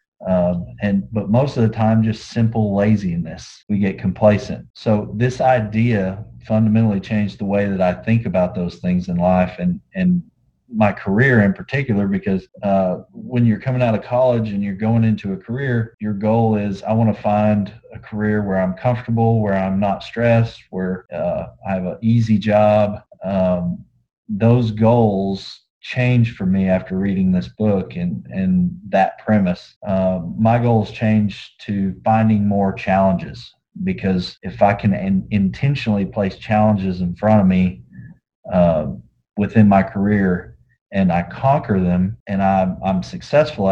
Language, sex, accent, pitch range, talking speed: English, male, American, 95-115 Hz, 160 wpm